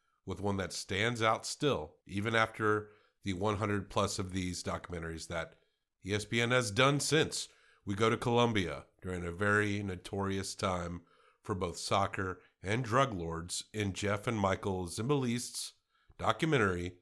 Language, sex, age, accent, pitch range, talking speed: English, male, 50-69, American, 95-120 Hz, 140 wpm